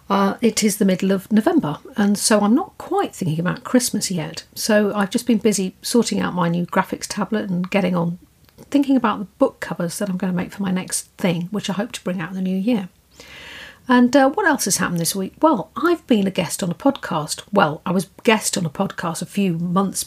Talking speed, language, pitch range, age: 240 wpm, English, 180-220 Hz, 50-69